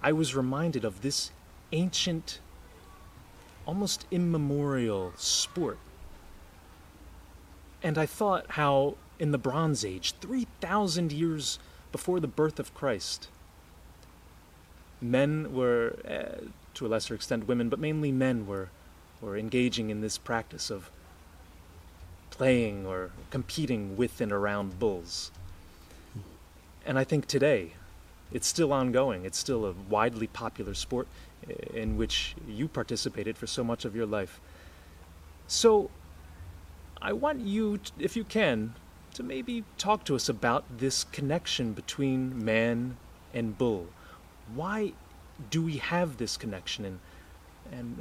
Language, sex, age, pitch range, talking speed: English, male, 30-49, 85-140 Hz, 125 wpm